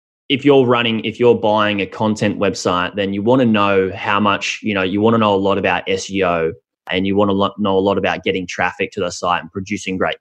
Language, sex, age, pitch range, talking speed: English, male, 20-39, 95-110 Hz, 255 wpm